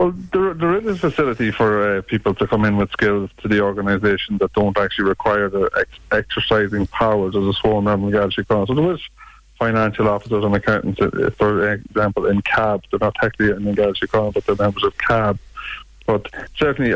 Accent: Irish